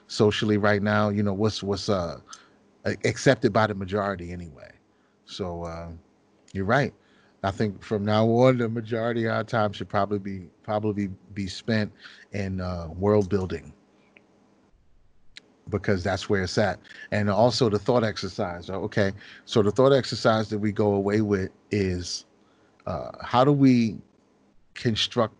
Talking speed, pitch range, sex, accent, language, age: 150 wpm, 100-115 Hz, male, American, English, 30-49